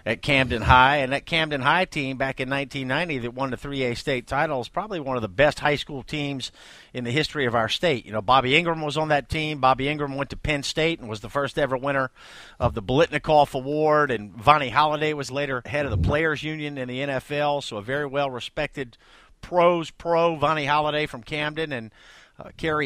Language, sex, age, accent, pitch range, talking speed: English, male, 50-69, American, 125-150 Hz, 215 wpm